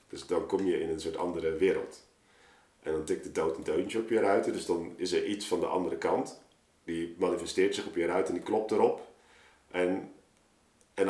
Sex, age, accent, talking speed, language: male, 50-69, Dutch, 215 wpm, Dutch